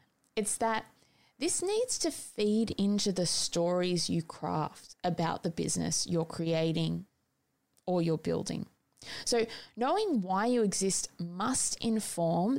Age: 20-39